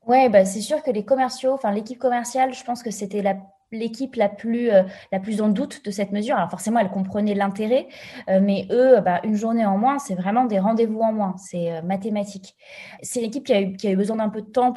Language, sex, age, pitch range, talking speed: French, female, 20-39, 195-240 Hz, 250 wpm